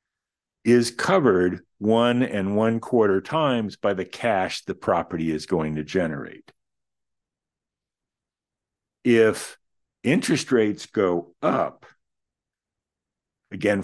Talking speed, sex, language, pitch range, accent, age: 95 wpm, male, English, 90-120 Hz, American, 50-69